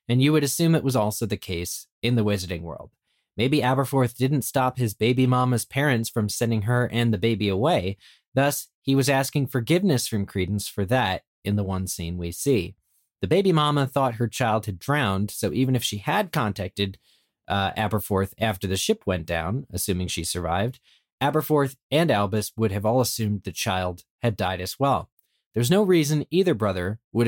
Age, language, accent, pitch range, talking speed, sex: 40-59, English, American, 100-130 Hz, 190 wpm, male